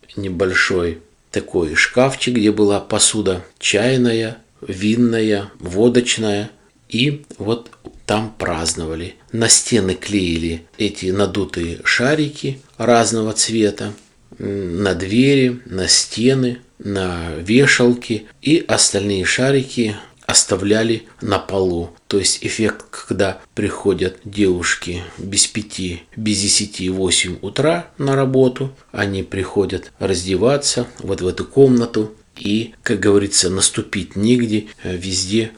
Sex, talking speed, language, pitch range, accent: male, 105 wpm, Russian, 95-120 Hz, native